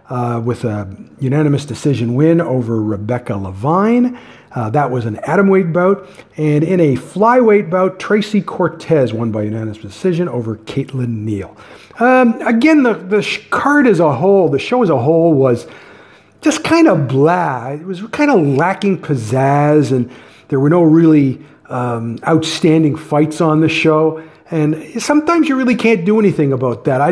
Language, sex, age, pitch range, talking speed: English, male, 50-69, 130-195 Hz, 165 wpm